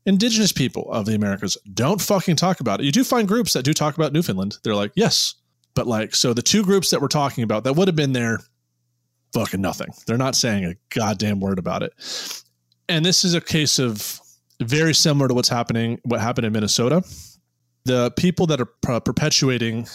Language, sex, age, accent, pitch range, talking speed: English, male, 30-49, American, 110-145 Hz, 200 wpm